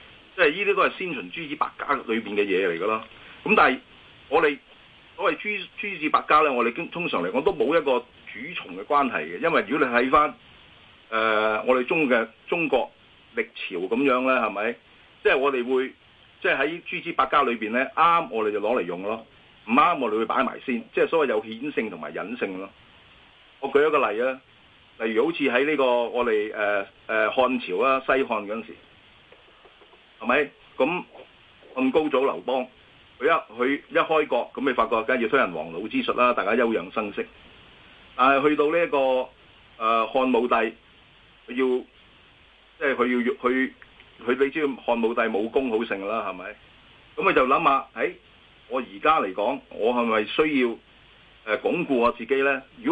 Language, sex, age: Chinese, male, 40-59